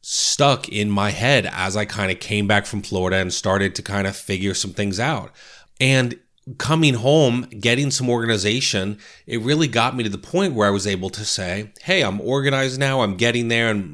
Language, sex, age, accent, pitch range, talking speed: English, male, 30-49, American, 100-120 Hz, 205 wpm